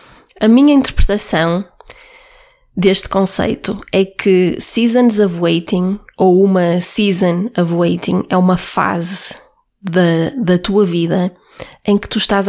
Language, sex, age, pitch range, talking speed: Portuguese, female, 20-39, 185-235 Hz, 125 wpm